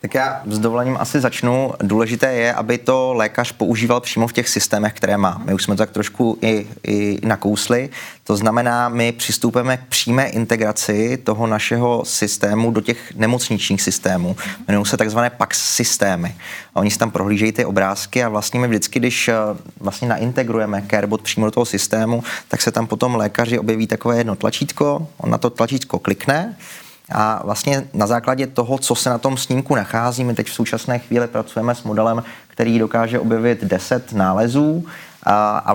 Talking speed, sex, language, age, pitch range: 175 wpm, male, Czech, 20-39, 110-130 Hz